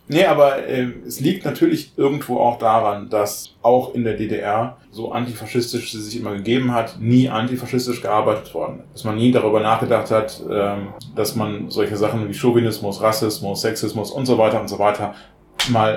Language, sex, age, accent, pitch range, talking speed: German, male, 20-39, German, 105-120 Hz, 180 wpm